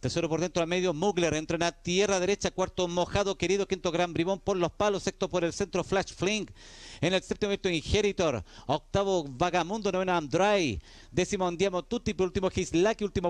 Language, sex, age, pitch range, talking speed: Spanish, male, 50-69, 175-250 Hz, 185 wpm